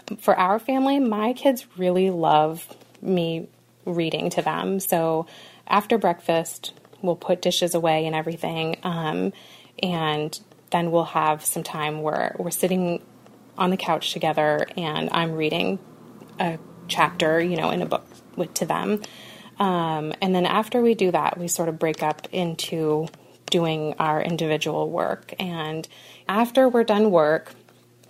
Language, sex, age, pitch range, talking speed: English, female, 30-49, 160-190 Hz, 145 wpm